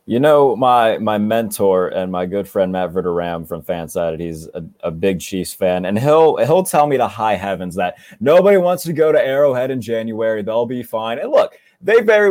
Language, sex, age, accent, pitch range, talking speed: English, male, 20-39, American, 95-115 Hz, 210 wpm